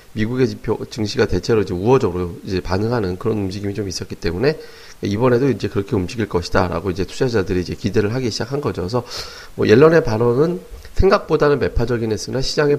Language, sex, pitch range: Korean, male, 100-135 Hz